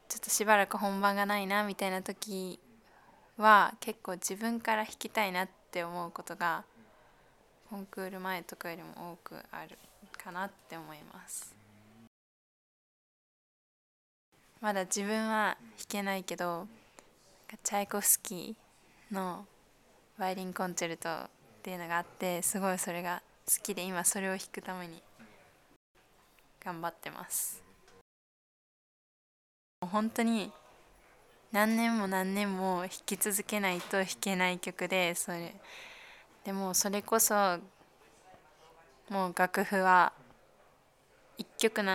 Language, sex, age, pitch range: Japanese, female, 20-39, 175-210 Hz